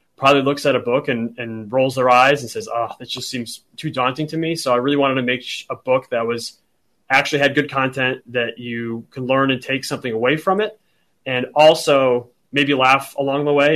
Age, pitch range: 30-49, 125-145 Hz